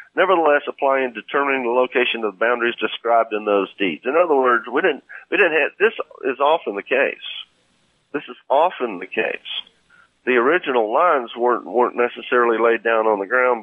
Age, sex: 50-69, male